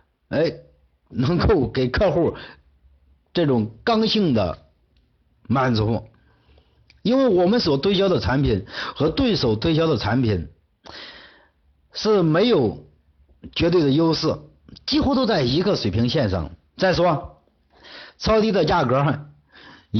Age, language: 50-69, Chinese